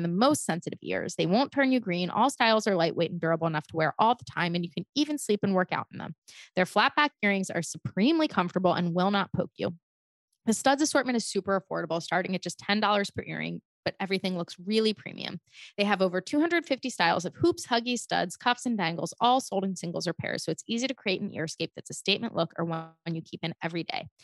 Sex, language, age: female, English, 20-39